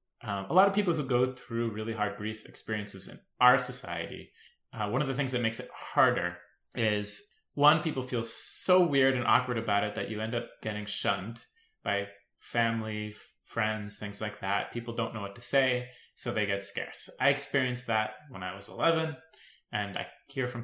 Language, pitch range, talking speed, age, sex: English, 100-130 Hz, 195 wpm, 20-39, male